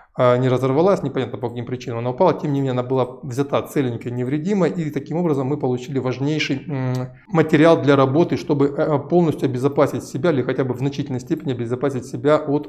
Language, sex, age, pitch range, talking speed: Russian, male, 20-39, 125-155 Hz, 180 wpm